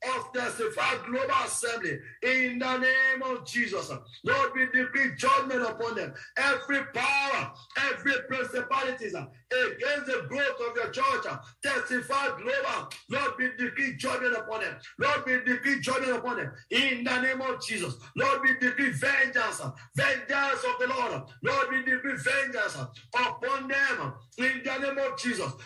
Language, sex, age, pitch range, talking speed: English, male, 50-69, 245-275 Hz, 145 wpm